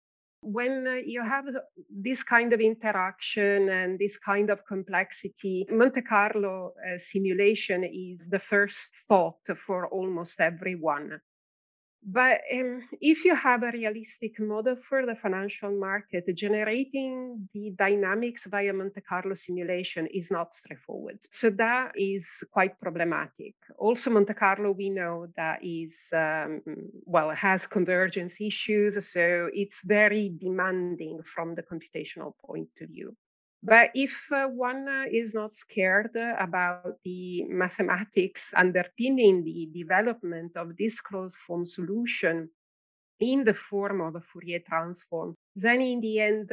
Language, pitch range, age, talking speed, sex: English, 180-215 Hz, 40-59, 135 wpm, female